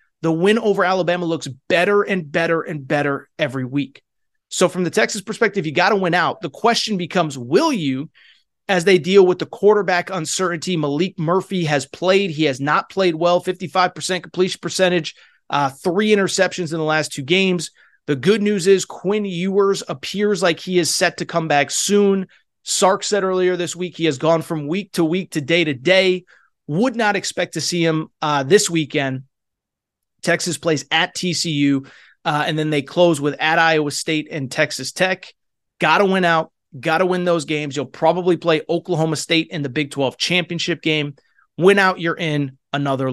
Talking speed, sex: 190 wpm, male